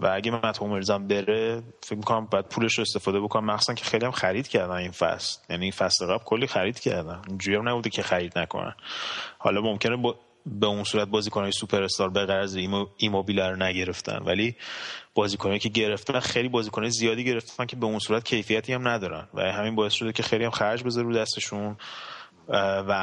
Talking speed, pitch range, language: 190 wpm, 95-115 Hz, Persian